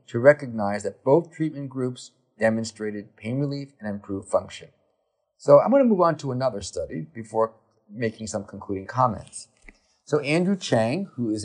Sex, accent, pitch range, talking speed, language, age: male, American, 105-135 Hz, 160 wpm, English, 40-59